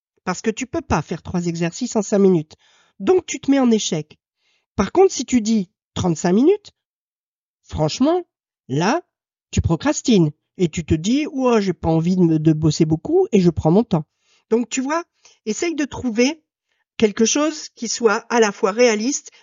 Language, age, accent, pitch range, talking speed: French, 50-69, French, 180-280 Hz, 180 wpm